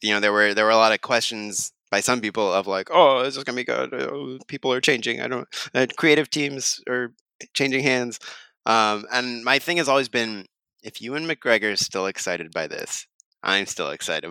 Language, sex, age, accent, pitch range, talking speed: English, male, 20-39, American, 105-135 Hz, 215 wpm